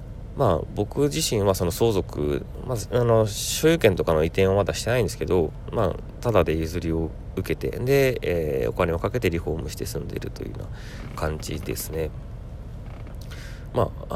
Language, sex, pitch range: Japanese, male, 70-100 Hz